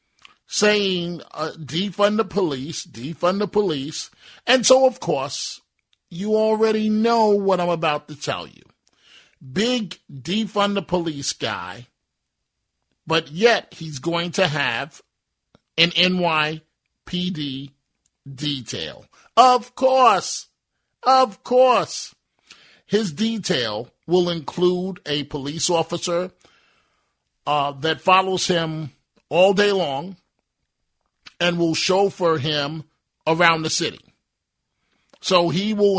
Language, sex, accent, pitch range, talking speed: English, male, American, 155-195 Hz, 105 wpm